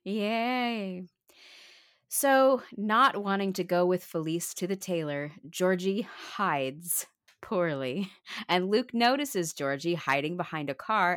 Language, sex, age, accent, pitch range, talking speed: English, female, 30-49, American, 175-260 Hz, 120 wpm